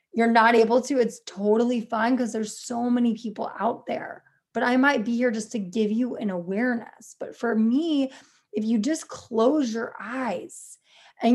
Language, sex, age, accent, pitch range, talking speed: English, female, 20-39, American, 215-255 Hz, 185 wpm